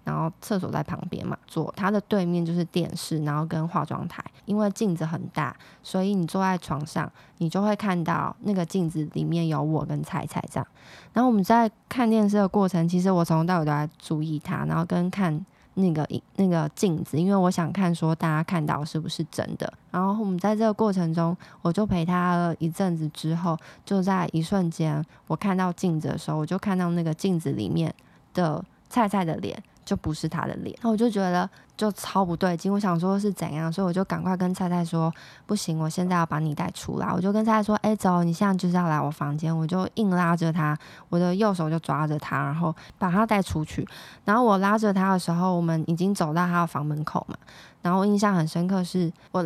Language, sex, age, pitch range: Chinese, female, 20-39, 160-195 Hz